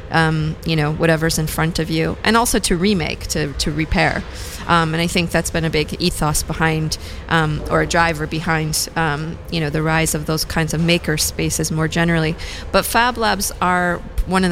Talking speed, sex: 205 wpm, female